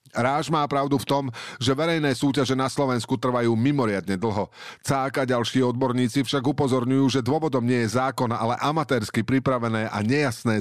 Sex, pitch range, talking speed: male, 110-140 Hz, 160 wpm